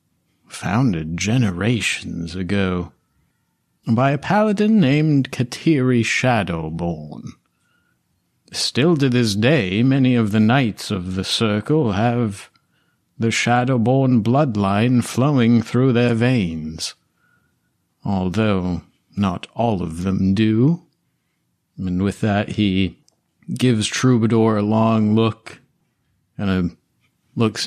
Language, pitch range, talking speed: English, 95-120 Hz, 100 wpm